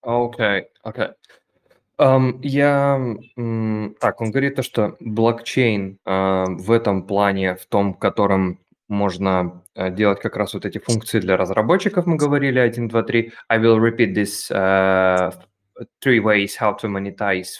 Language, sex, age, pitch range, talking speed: Russian, male, 20-39, 100-120 Hz, 145 wpm